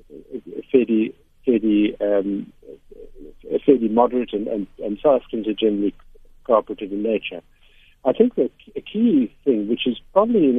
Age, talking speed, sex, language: 60-79, 120 wpm, male, English